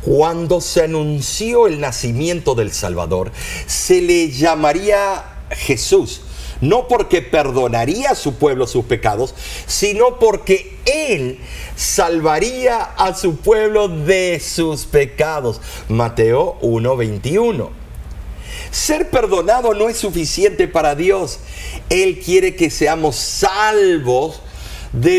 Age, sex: 50-69, male